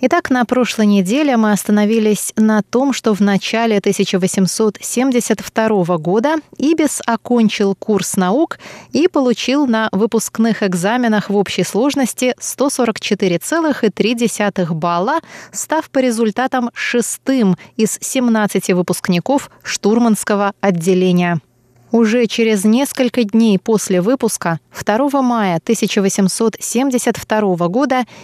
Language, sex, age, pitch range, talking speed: Russian, female, 20-39, 190-245 Hz, 100 wpm